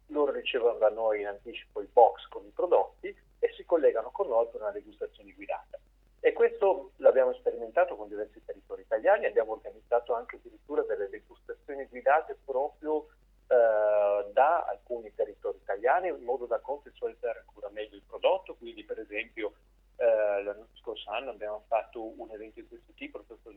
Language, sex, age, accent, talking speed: Italian, male, 40-59, native, 165 wpm